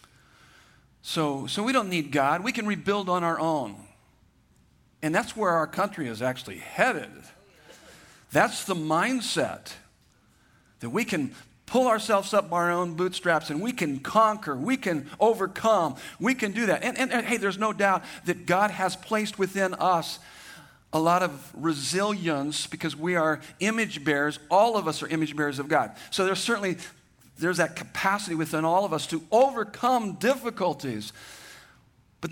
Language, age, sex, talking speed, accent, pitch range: English, 50-69, male, 165 wpm, American, 155-215 Hz